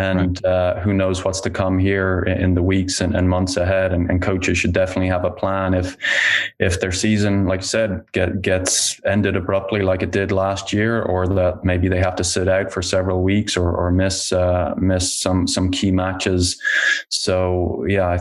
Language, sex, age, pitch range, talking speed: English, male, 20-39, 90-105 Hz, 205 wpm